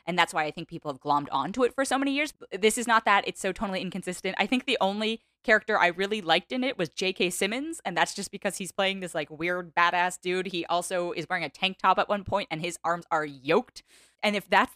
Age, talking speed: 10-29, 260 wpm